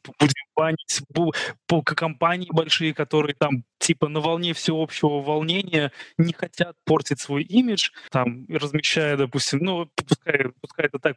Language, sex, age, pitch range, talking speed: Russian, male, 20-39, 140-170 Hz, 145 wpm